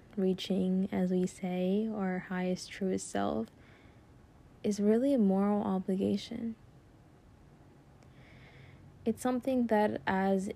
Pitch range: 185-205 Hz